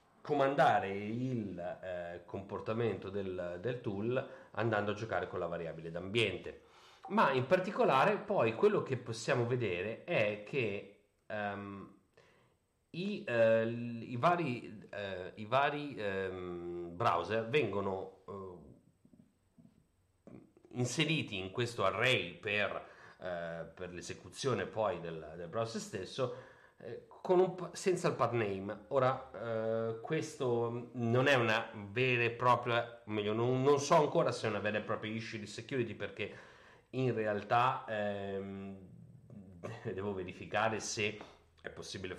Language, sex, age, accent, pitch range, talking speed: Italian, male, 40-59, native, 95-125 Hz, 105 wpm